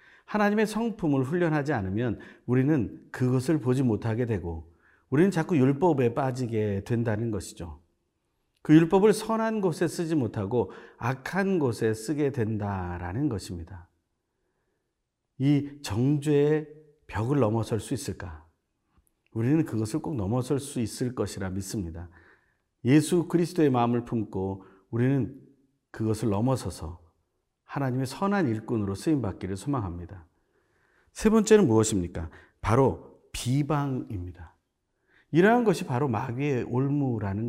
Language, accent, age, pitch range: Korean, native, 50-69, 100-155 Hz